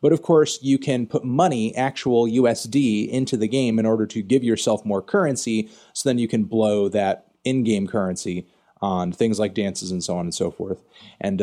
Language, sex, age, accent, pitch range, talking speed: English, male, 30-49, American, 100-135 Hz, 200 wpm